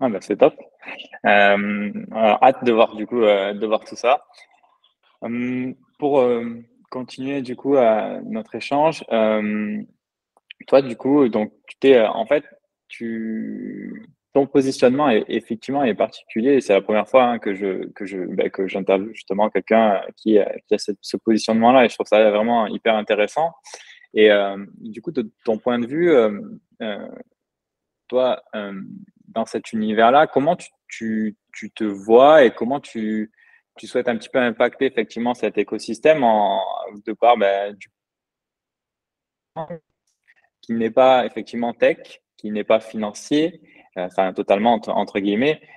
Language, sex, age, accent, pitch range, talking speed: French, male, 20-39, French, 105-135 Hz, 165 wpm